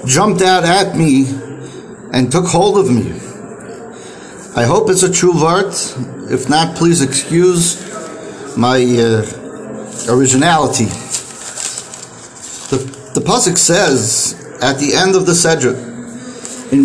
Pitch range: 140-200 Hz